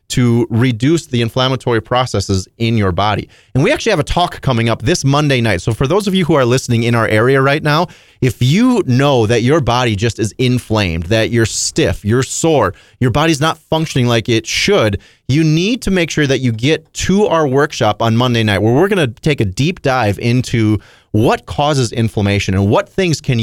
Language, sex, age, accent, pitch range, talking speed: English, male, 30-49, American, 110-145 Hz, 215 wpm